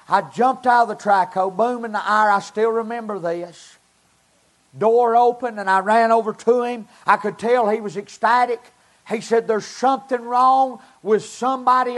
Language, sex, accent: English, male, American